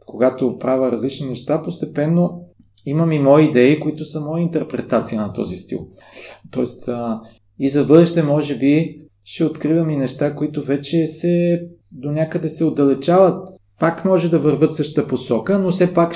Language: Bulgarian